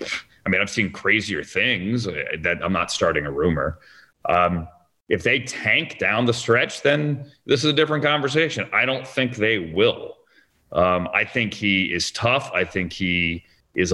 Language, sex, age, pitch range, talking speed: English, male, 30-49, 90-120 Hz, 170 wpm